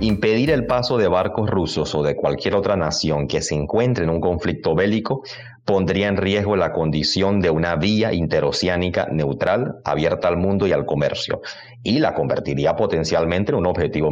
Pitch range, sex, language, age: 80-115 Hz, male, Spanish, 30-49